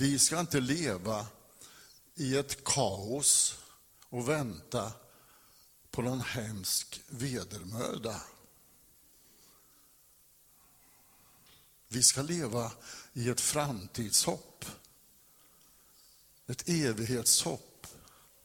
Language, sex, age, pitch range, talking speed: Swedish, male, 60-79, 115-145 Hz, 70 wpm